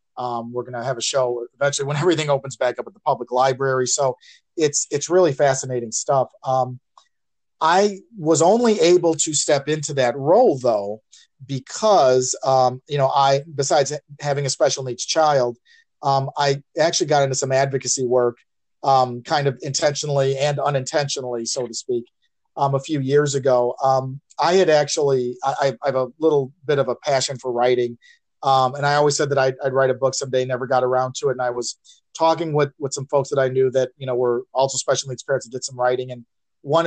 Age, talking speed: 40-59, 200 wpm